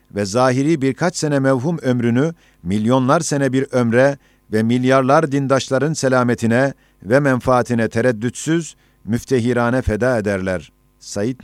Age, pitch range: 50-69, 115-140 Hz